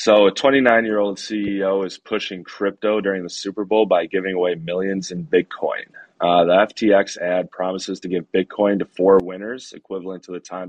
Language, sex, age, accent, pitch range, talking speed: English, male, 20-39, American, 90-100 Hz, 180 wpm